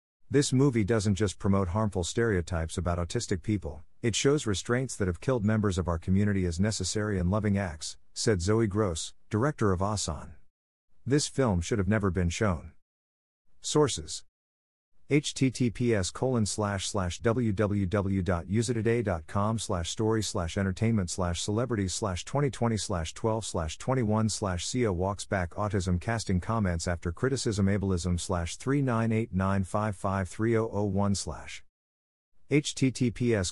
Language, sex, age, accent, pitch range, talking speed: English, male, 50-69, American, 90-115 Hz, 145 wpm